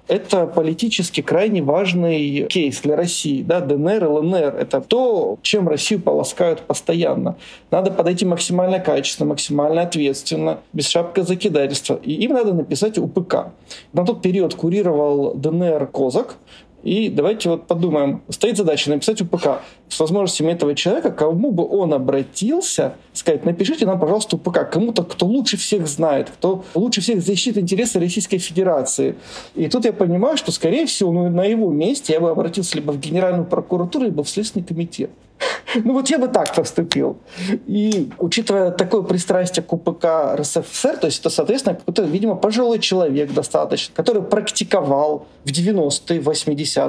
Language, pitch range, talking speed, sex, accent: Russian, 155-200 Hz, 150 wpm, male, native